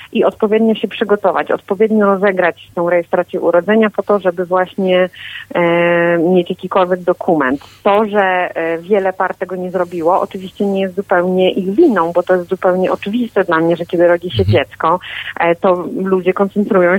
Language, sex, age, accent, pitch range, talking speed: Polish, female, 30-49, native, 180-200 Hz, 155 wpm